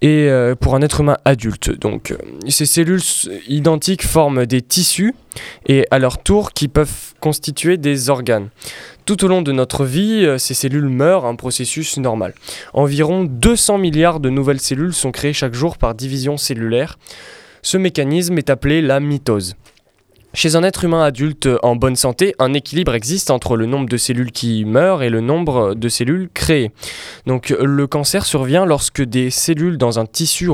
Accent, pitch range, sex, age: French, 125-160 Hz, male, 20-39